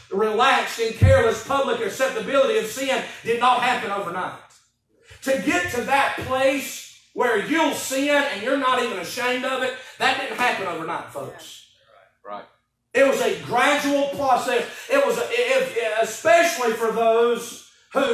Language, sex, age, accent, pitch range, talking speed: English, male, 30-49, American, 235-285 Hz, 140 wpm